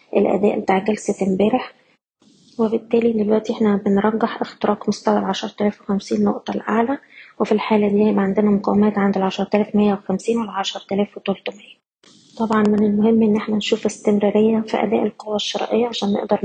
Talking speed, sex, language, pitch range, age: 155 wpm, female, Arabic, 200-220 Hz, 20-39